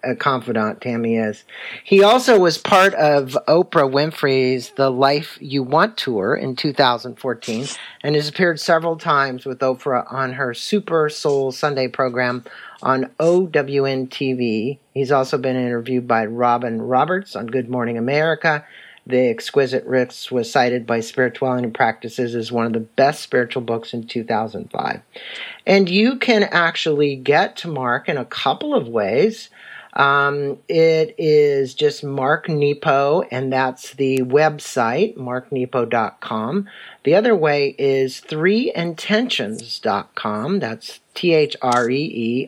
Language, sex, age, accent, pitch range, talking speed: English, male, 50-69, American, 125-155 Hz, 130 wpm